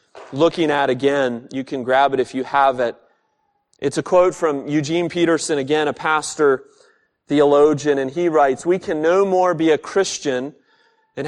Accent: American